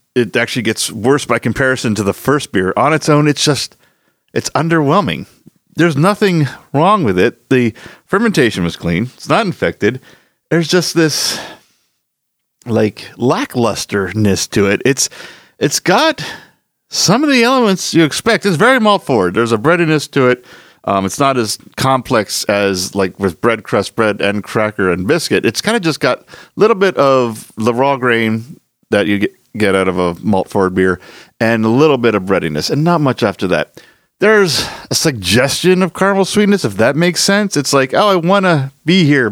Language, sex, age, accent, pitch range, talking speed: English, male, 50-69, American, 105-160 Hz, 185 wpm